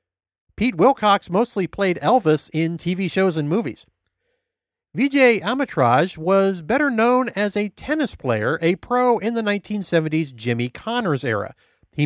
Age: 40-59